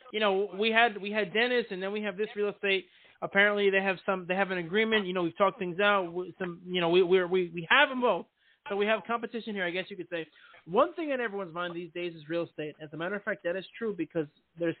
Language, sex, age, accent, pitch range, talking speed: English, male, 30-49, American, 175-220 Hz, 280 wpm